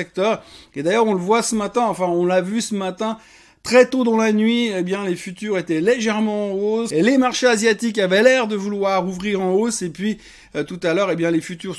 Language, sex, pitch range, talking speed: French, male, 180-220 Hz, 250 wpm